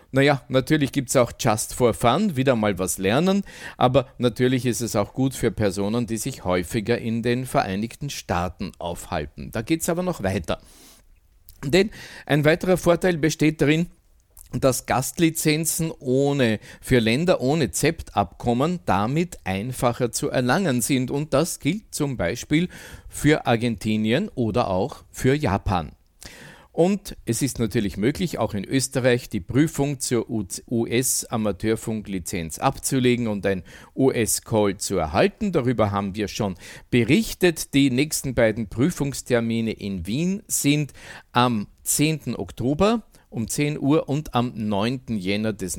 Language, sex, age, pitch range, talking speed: German, male, 50-69, 105-145 Hz, 135 wpm